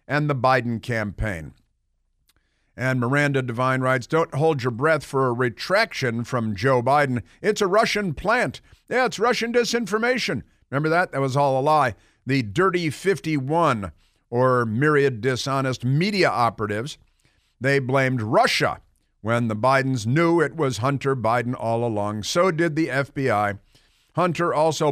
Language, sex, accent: English, male, American